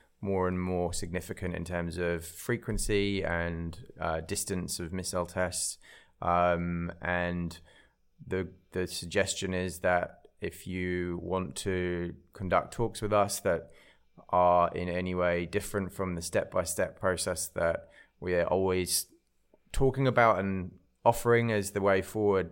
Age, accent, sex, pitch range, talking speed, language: 20-39, British, male, 90-100 Hz, 135 wpm, English